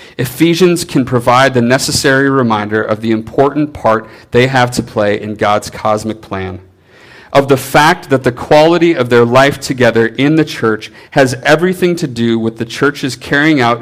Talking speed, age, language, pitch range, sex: 175 wpm, 40-59, English, 105-125 Hz, male